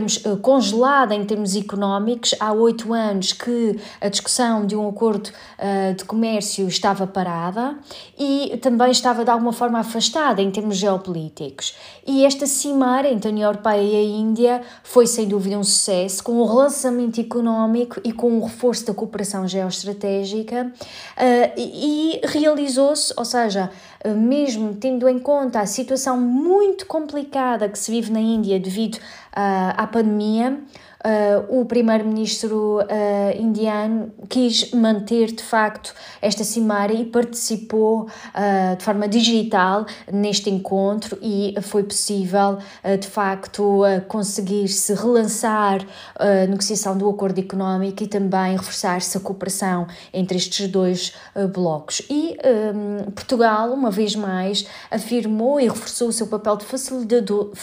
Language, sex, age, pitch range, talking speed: Portuguese, female, 20-39, 200-240 Hz, 135 wpm